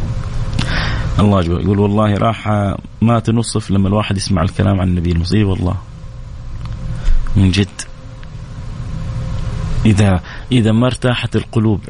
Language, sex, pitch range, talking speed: English, male, 100-125 Hz, 105 wpm